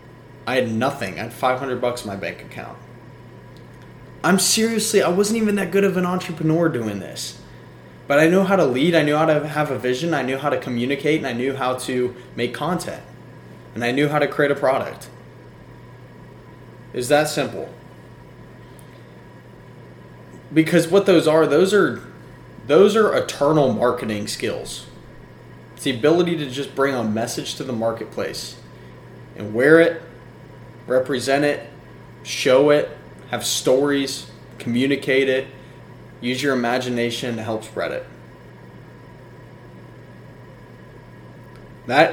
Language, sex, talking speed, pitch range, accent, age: English, male, 145 wpm, 110-150 Hz, American, 20-39